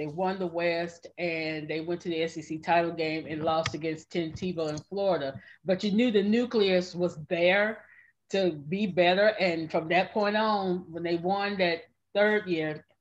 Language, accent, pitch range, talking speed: English, American, 165-205 Hz, 185 wpm